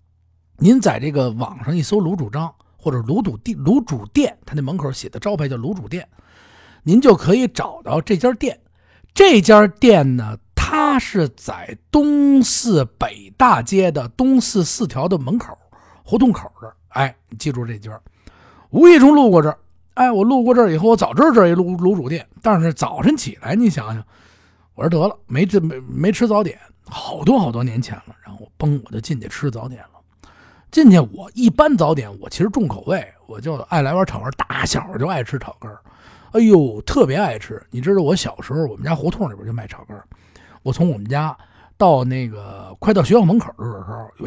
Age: 50-69